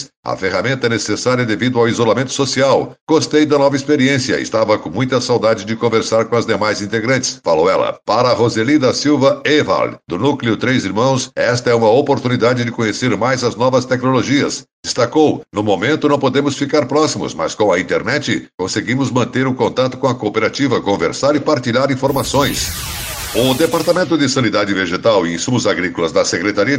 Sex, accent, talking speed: male, Brazilian, 165 wpm